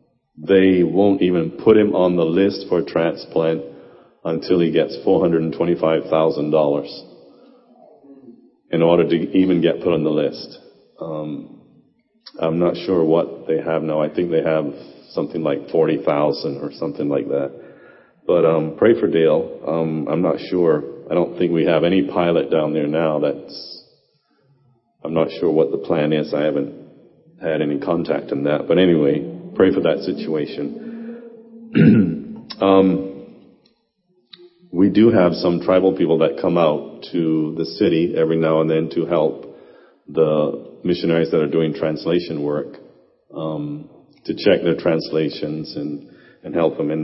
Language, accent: English, American